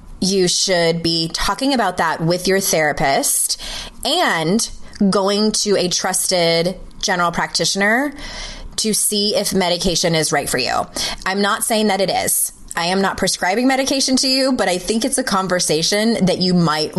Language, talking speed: English, 160 wpm